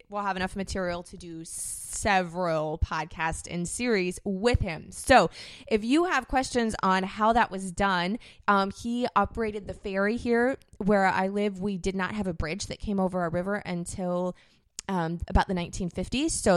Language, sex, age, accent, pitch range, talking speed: English, female, 20-39, American, 175-210 Hz, 175 wpm